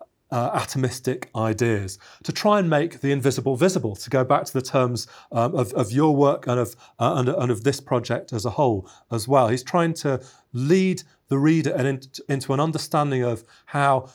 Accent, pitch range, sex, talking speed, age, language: British, 120-155 Hz, male, 200 wpm, 30-49, English